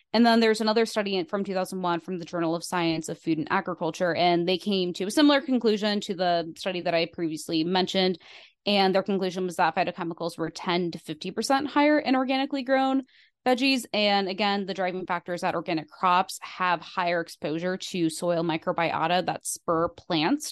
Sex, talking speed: female, 185 wpm